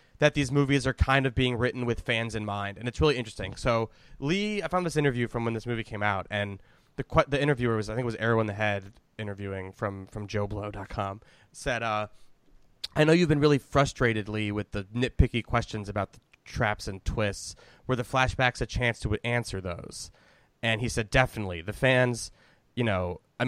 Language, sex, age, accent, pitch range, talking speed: English, male, 20-39, American, 105-135 Hz, 210 wpm